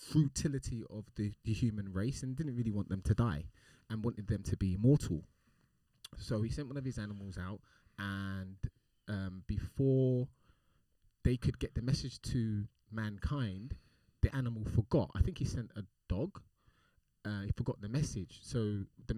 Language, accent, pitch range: English, British, 105-135 Hz